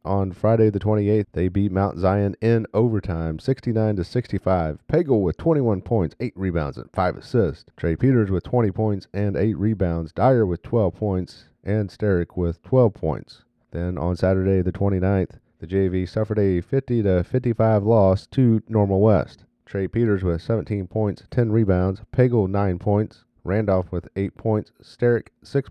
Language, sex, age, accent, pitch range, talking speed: English, male, 40-59, American, 95-115 Hz, 155 wpm